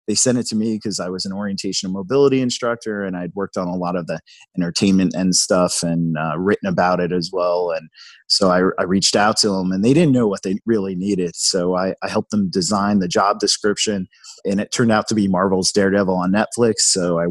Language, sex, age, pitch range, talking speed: English, male, 30-49, 95-115 Hz, 235 wpm